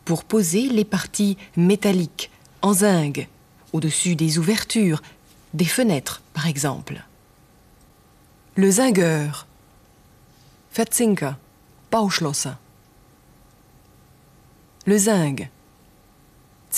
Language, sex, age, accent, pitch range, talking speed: German, female, 30-49, French, 150-210 Hz, 70 wpm